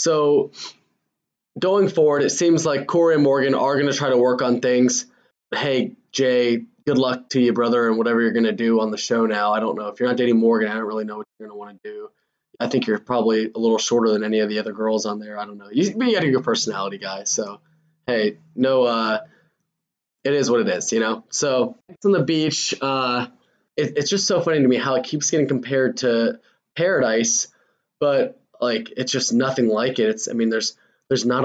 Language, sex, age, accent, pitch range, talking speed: English, male, 20-39, American, 115-155 Hz, 235 wpm